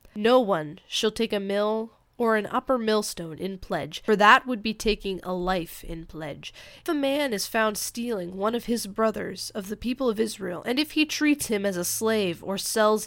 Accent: American